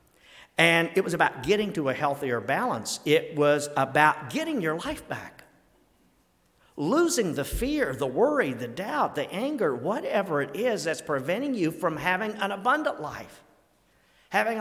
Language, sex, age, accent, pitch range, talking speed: English, male, 50-69, American, 135-195 Hz, 150 wpm